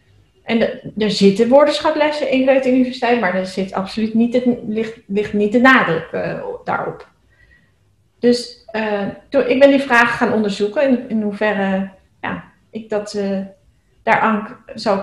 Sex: female